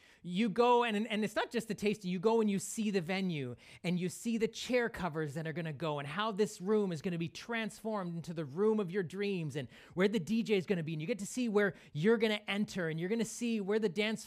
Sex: male